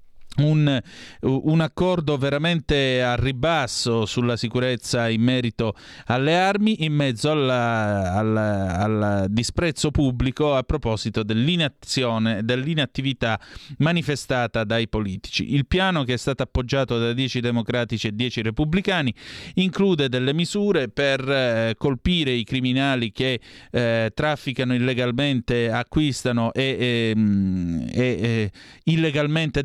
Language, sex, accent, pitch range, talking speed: Italian, male, native, 115-145 Hz, 105 wpm